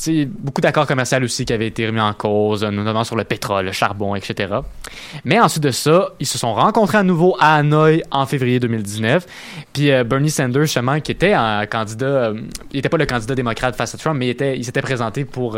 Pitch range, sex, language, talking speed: 115-155 Hz, male, French, 220 wpm